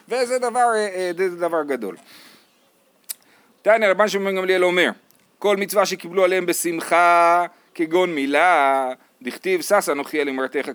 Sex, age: male, 30-49